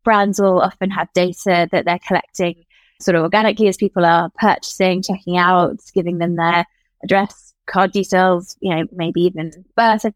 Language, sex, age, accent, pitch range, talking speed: English, female, 20-39, British, 175-195 Hz, 170 wpm